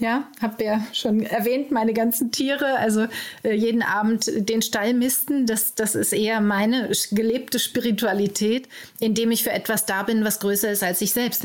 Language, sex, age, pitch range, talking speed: German, female, 30-49, 200-230 Hz, 180 wpm